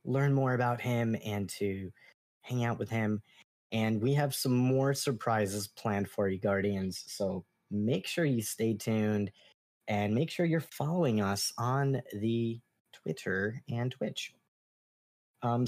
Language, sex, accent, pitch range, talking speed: English, male, American, 110-165 Hz, 145 wpm